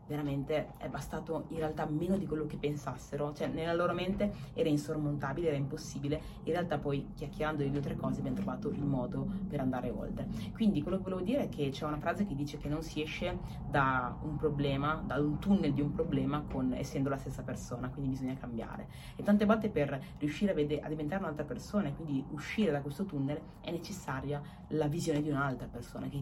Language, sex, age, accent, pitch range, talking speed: Italian, female, 30-49, native, 135-160 Hz, 210 wpm